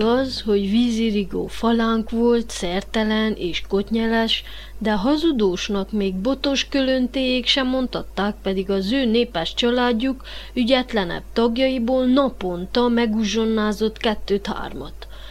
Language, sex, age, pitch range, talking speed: Hungarian, female, 30-49, 200-255 Hz, 100 wpm